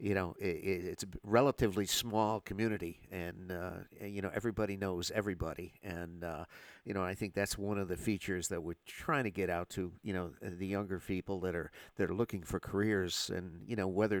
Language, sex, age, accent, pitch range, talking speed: English, male, 50-69, American, 90-105 Hz, 205 wpm